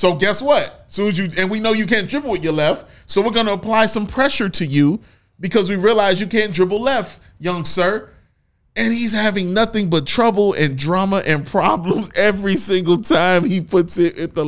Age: 30-49